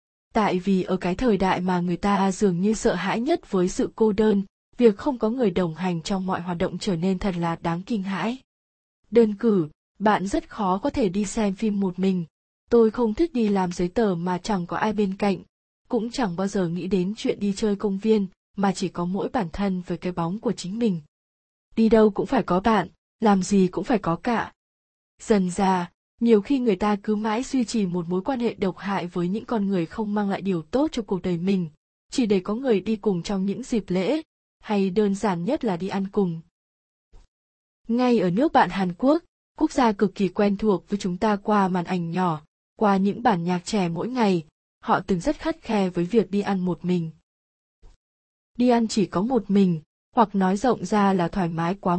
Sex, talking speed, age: female, 225 wpm, 20-39